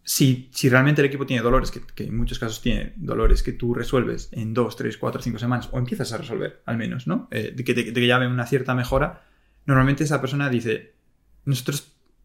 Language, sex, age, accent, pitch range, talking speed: Spanish, male, 20-39, Spanish, 115-135 Hz, 220 wpm